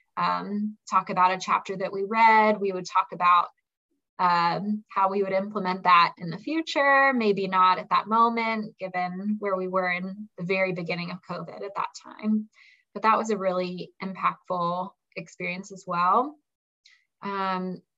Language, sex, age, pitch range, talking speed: English, female, 20-39, 185-220 Hz, 165 wpm